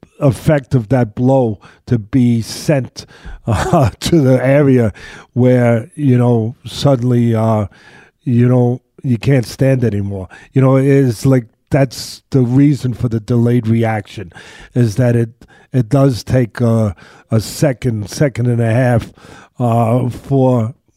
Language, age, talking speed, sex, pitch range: English, 50-69, 140 wpm, male, 115-140 Hz